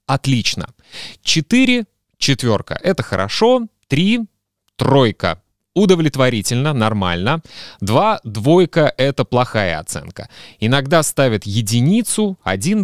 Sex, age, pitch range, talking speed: male, 30-49, 105-150 Hz, 90 wpm